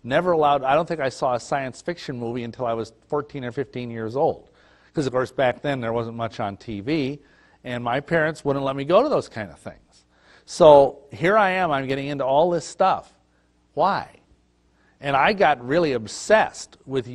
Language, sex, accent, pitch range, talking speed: English, male, American, 115-140 Hz, 205 wpm